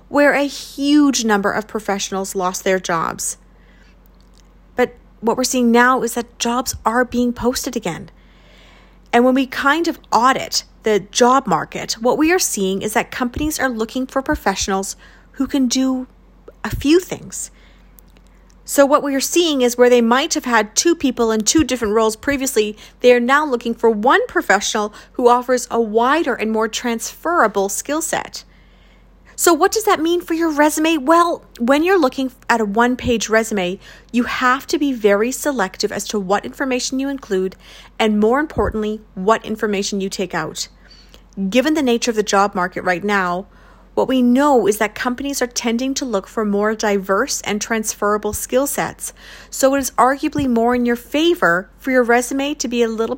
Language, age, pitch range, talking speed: English, 30-49, 205-270 Hz, 180 wpm